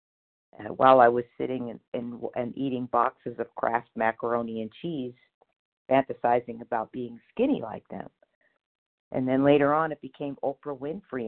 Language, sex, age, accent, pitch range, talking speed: English, female, 50-69, American, 130-160 Hz, 150 wpm